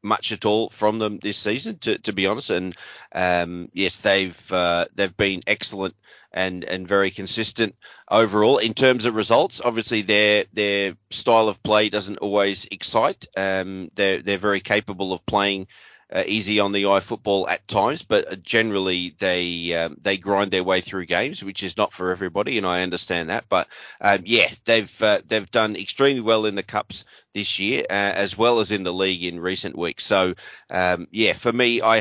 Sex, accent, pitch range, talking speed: male, Australian, 95-105 Hz, 190 wpm